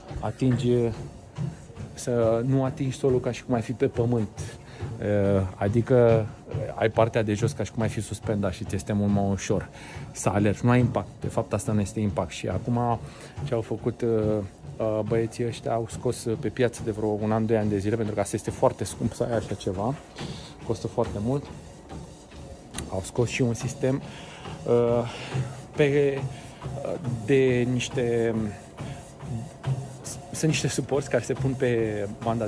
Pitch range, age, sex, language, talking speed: 110-130 Hz, 30-49, male, Romanian, 165 wpm